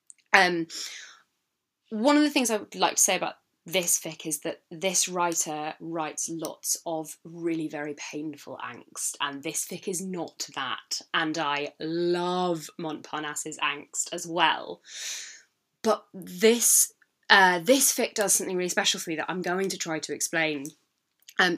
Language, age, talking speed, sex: English, 10-29, 155 wpm, female